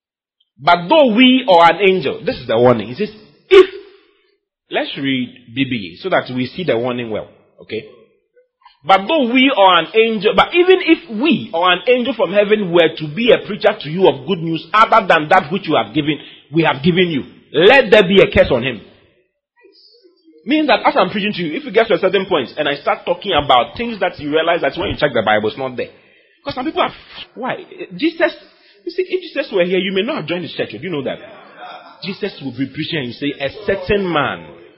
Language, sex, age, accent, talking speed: English, male, 30-49, Nigerian, 225 wpm